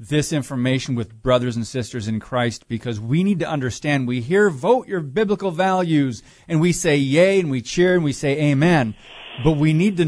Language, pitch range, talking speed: English, 125-170 Hz, 200 wpm